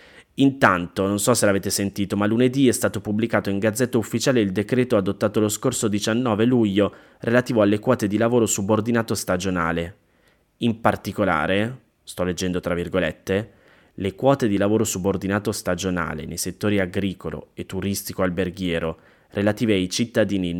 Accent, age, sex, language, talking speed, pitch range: native, 20-39, male, Italian, 145 wpm, 95-115 Hz